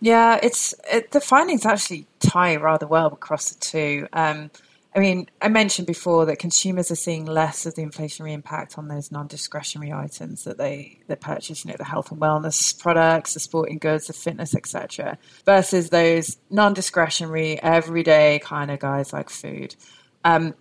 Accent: British